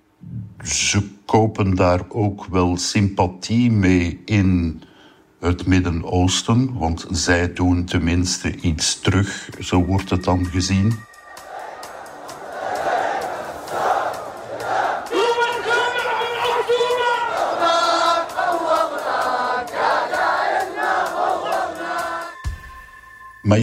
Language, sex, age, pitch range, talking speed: Dutch, male, 60-79, 90-110 Hz, 55 wpm